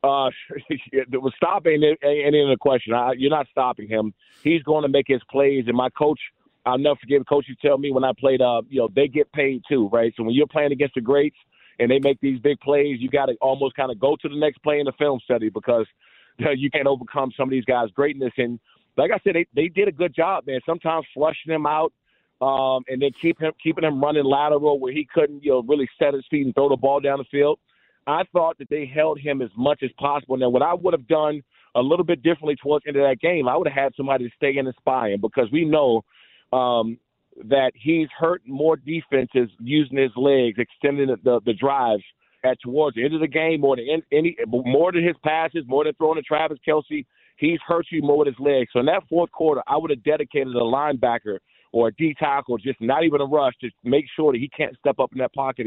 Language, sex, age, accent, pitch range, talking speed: English, male, 40-59, American, 130-155 Hz, 245 wpm